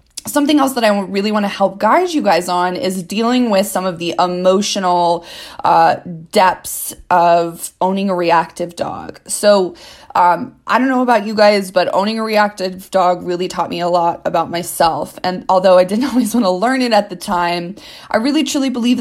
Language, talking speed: English, 195 wpm